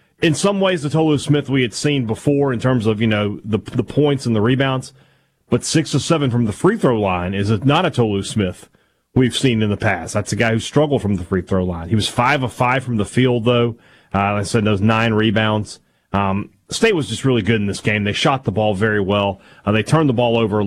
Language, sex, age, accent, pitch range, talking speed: English, male, 30-49, American, 100-125 Hz, 255 wpm